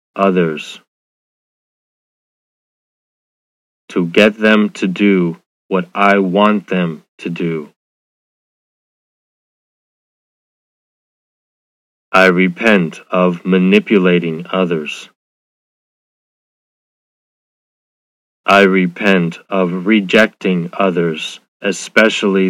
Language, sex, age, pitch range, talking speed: English, male, 30-49, 90-100 Hz, 60 wpm